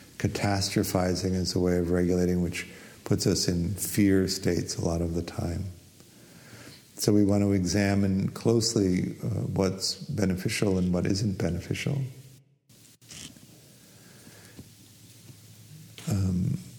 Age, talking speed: 60-79, 110 wpm